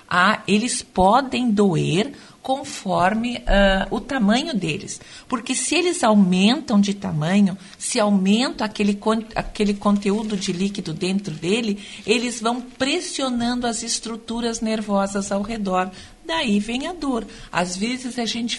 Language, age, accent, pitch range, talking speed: Portuguese, 50-69, Brazilian, 195-245 Hz, 130 wpm